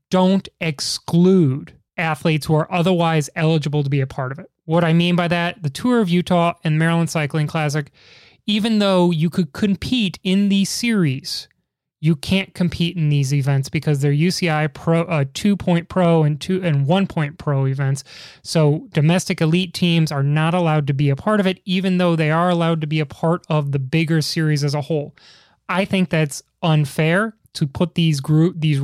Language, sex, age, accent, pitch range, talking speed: English, male, 30-49, American, 150-180 Hz, 185 wpm